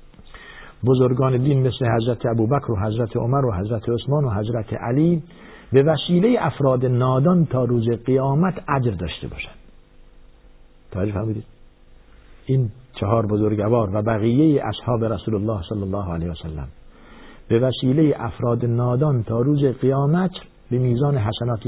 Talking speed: 135 wpm